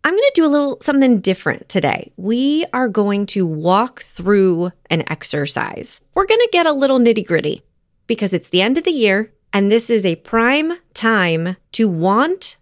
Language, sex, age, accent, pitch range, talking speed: English, female, 30-49, American, 185-270 Hz, 190 wpm